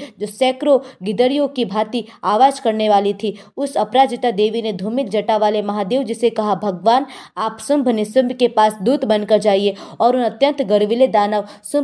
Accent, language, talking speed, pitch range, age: native, Hindi, 145 wpm, 220-260 Hz, 20-39